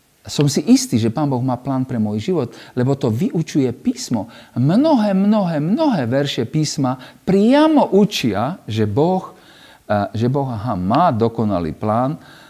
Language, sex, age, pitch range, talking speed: Slovak, male, 50-69, 100-155 Hz, 140 wpm